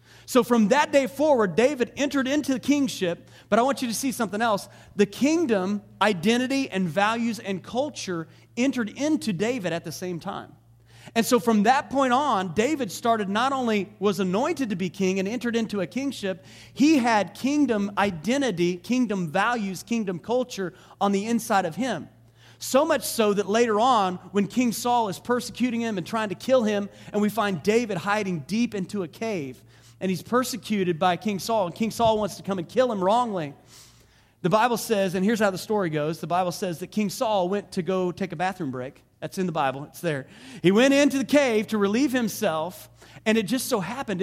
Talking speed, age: 200 wpm, 40-59